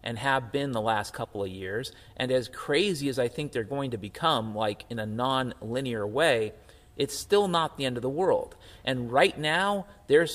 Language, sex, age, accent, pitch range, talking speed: English, male, 40-59, American, 125-165 Hz, 210 wpm